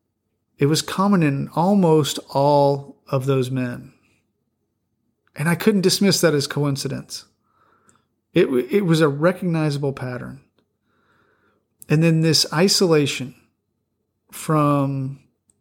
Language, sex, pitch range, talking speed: English, male, 125-160 Hz, 105 wpm